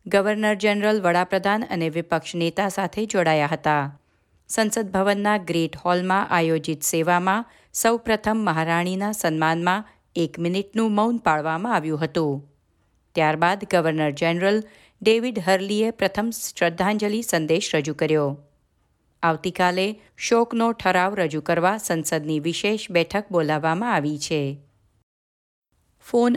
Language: Gujarati